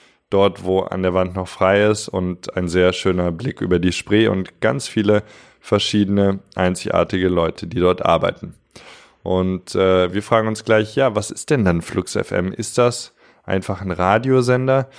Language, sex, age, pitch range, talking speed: German, male, 20-39, 95-110 Hz, 170 wpm